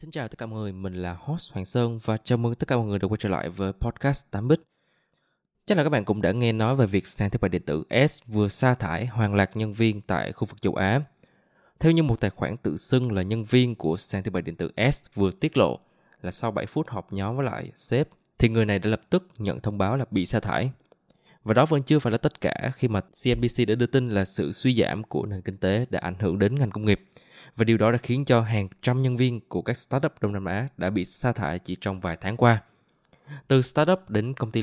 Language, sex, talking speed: Vietnamese, male, 265 wpm